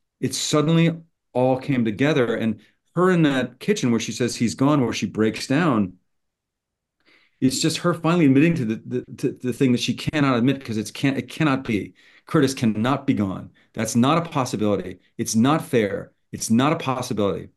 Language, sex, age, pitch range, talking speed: English, male, 40-59, 105-130 Hz, 190 wpm